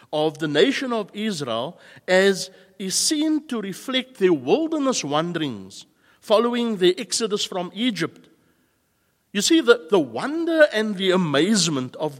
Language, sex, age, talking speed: English, male, 60-79, 135 wpm